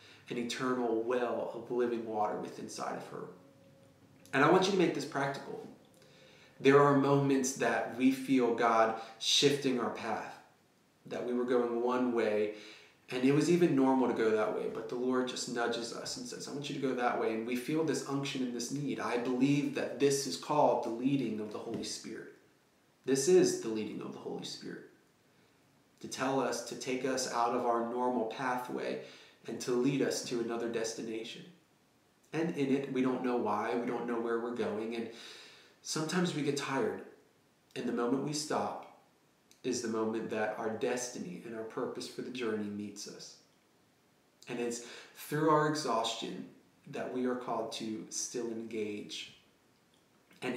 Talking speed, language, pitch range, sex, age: 185 wpm, English, 115-135 Hz, male, 30-49